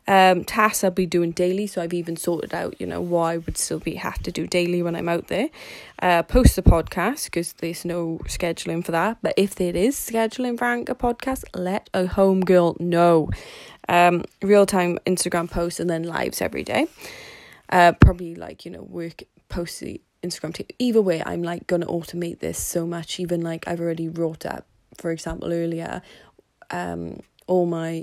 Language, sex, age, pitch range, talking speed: English, female, 20-39, 170-200 Hz, 190 wpm